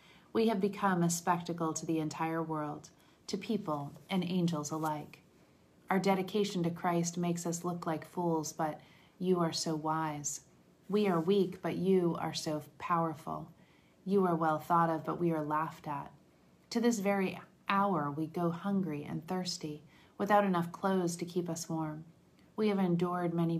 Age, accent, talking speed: 30-49, American, 170 wpm